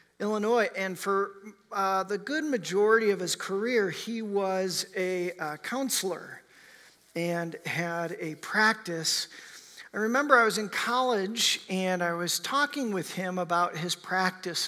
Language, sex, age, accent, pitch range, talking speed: English, male, 40-59, American, 160-200 Hz, 140 wpm